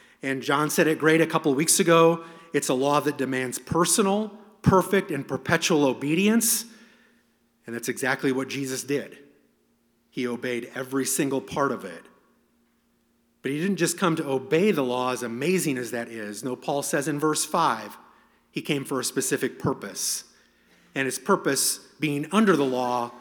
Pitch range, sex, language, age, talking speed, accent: 125-160 Hz, male, English, 30-49, 170 wpm, American